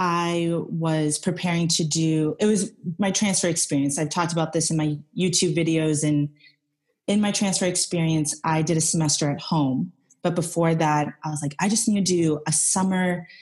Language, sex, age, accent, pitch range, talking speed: English, female, 30-49, American, 155-180 Hz, 190 wpm